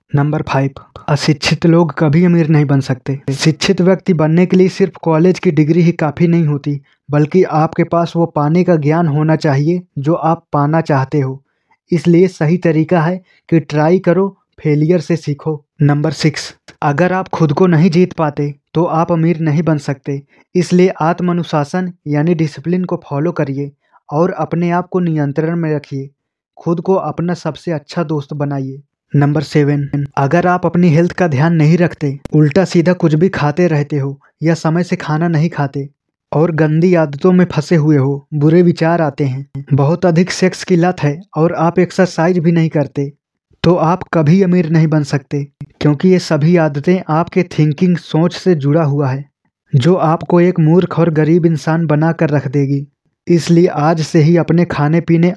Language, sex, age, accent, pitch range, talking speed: Hindi, male, 20-39, native, 150-175 Hz, 180 wpm